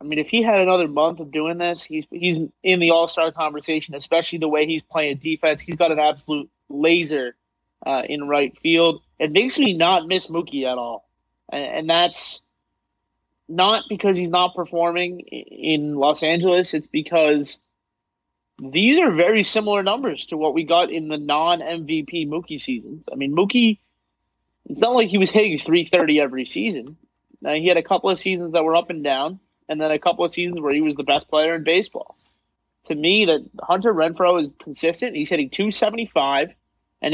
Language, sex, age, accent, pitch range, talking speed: English, male, 30-49, American, 150-180 Hz, 185 wpm